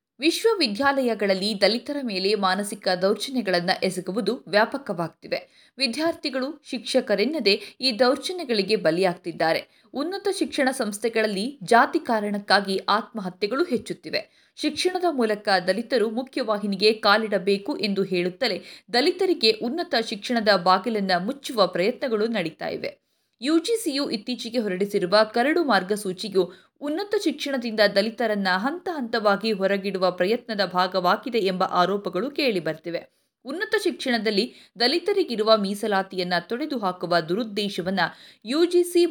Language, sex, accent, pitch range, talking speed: Kannada, female, native, 195-265 Hz, 90 wpm